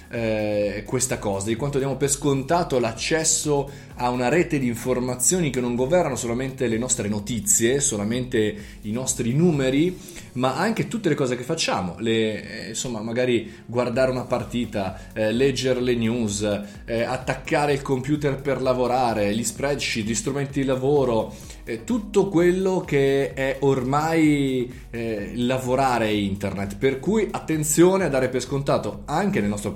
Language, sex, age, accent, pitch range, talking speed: Italian, male, 20-39, native, 110-145 Hz, 145 wpm